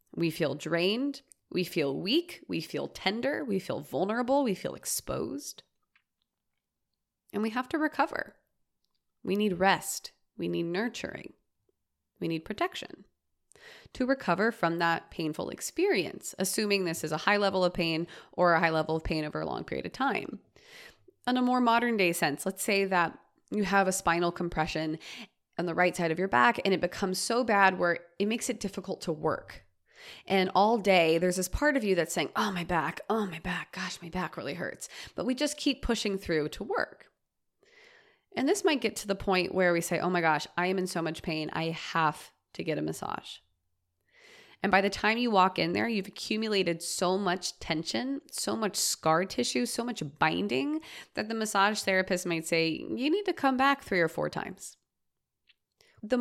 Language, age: English, 20-39